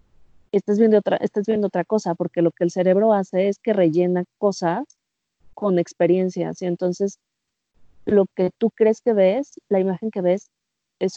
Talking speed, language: 160 wpm, Spanish